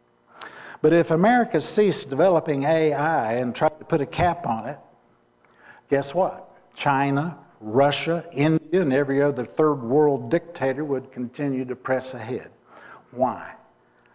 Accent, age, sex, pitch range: American, 60-79, male, 125-160 Hz